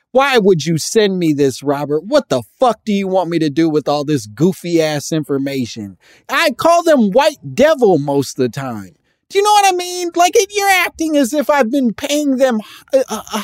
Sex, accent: male, American